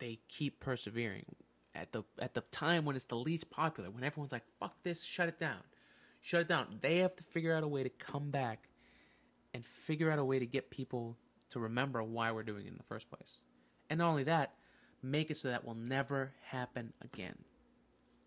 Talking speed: 210 wpm